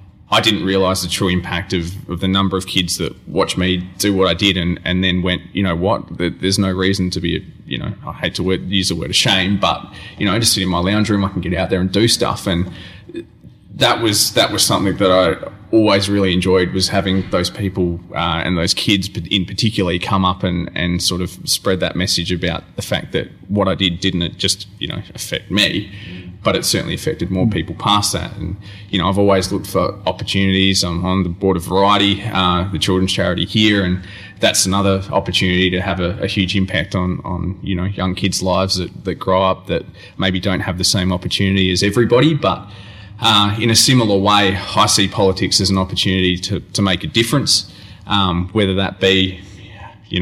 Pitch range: 90-100 Hz